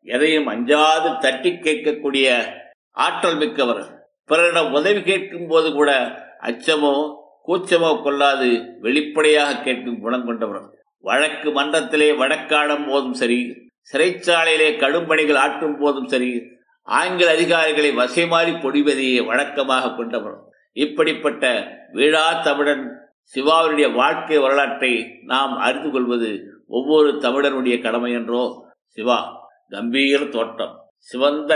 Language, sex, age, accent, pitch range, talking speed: Tamil, male, 50-69, native, 135-160 Hz, 90 wpm